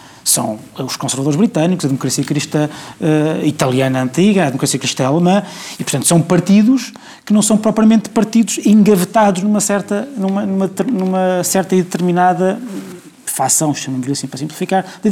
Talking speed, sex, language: 155 wpm, male, Portuguese